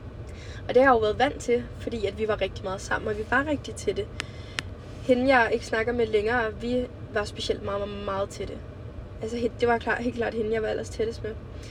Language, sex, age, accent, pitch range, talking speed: Danish, female, 20-39, native, 190-250 Hz, 220 wpm